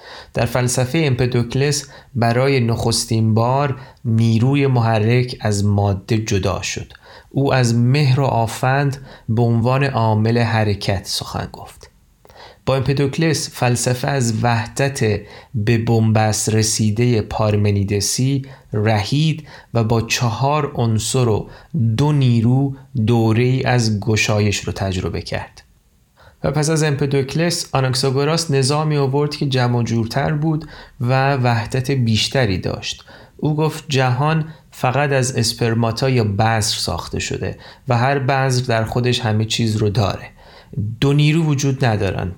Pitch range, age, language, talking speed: 110-140 Hz, 30-49, Persian, 120 wpm